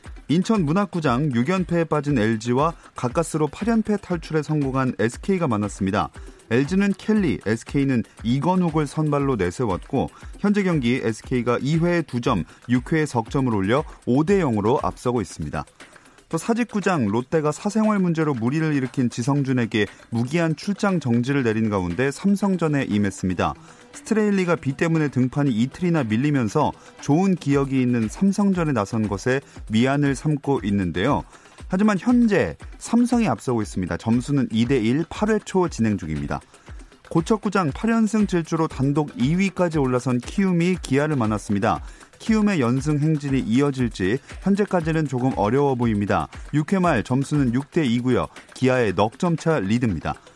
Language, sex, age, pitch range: Korean, male, 30-49, 120-175 Hz